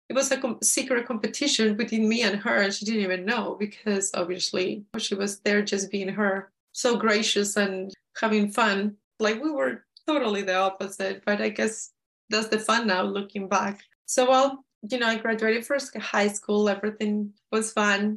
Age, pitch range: 20-39, 195-220 Hz